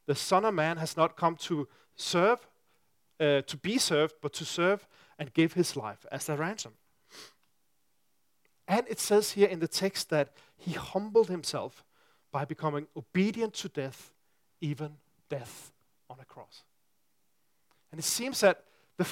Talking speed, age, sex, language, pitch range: 155 wpm, 40-59, male, English, 150-195 Hz